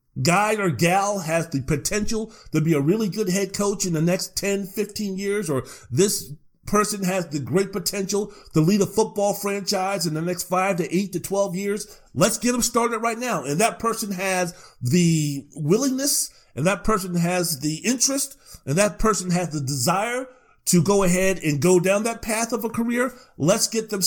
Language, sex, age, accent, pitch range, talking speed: English, male, 50-69, American, 165-205 Hz, 185 wpm